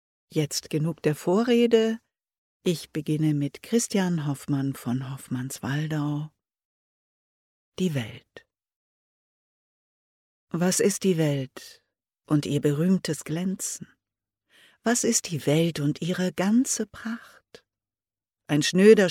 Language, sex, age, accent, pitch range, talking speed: German, female, 60-79, German, 145-185 Hz, 100 wpm